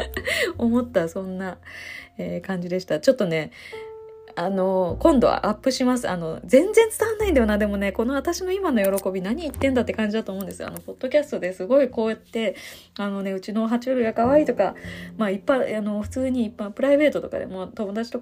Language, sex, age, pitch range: Japanese, female, 20-39, 180-260 Hz